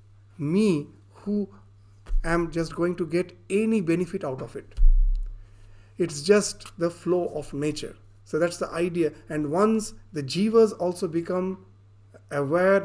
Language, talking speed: English, 135 wpm